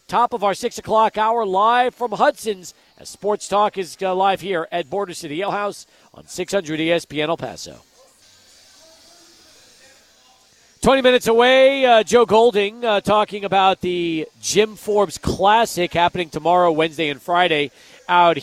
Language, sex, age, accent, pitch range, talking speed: English, male, 40-59, American, 175-220 Hz, 145 wpm